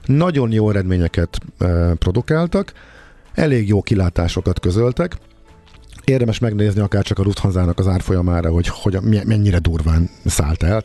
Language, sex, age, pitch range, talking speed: Hungarian, male, 50-69, 90-120 Hz, 140 wpm